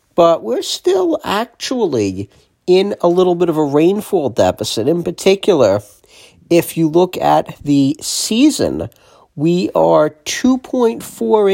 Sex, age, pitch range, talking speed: male, 50-69, 140-190 Hz, 120 wpm